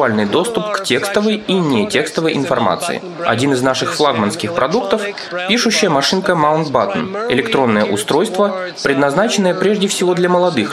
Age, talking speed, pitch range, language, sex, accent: 20-39, 125 wpm, 130-195 Hz, Russian, male, native